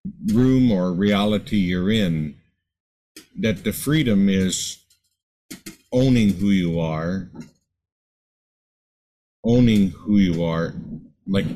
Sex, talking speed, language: male, 95 wpm, English